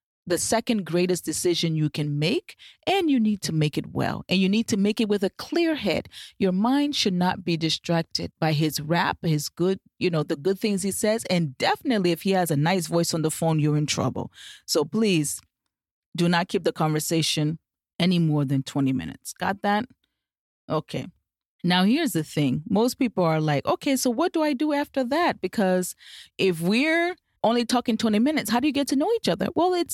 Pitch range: 170-245 Hz